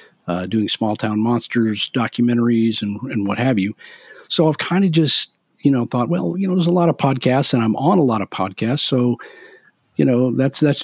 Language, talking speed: English, 215 wpm